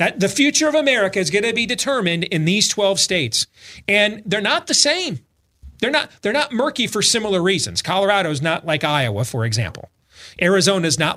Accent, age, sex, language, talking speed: American, 40-59, male, English, 200 wpm